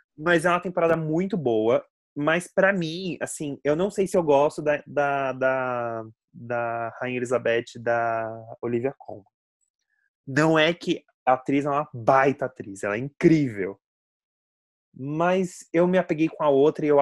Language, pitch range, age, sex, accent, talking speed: Portuguese, 115-155 Hz, 20-39, male, Brazilian, 160 wpm